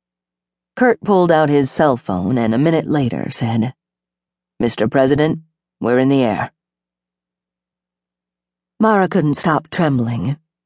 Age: 40-59